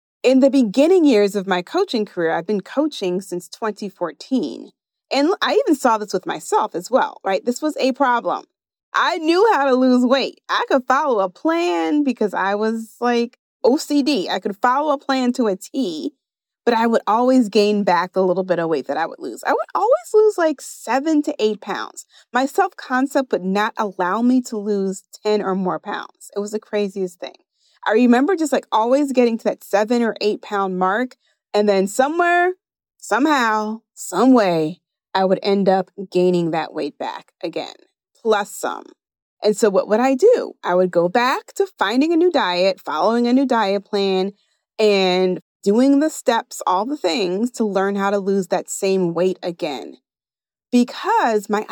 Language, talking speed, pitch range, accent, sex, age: English, 185 wpm, 190-270 Hz, American, female, 30-49